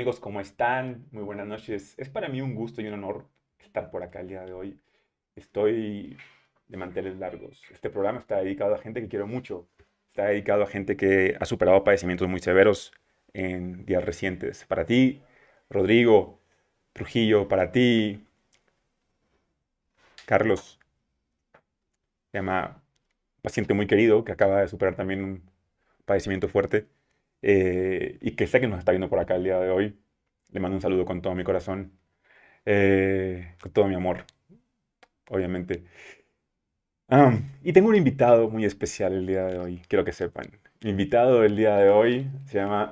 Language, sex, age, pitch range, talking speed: Spanish, male, 30-49, 95-110 Hz, 165 wpm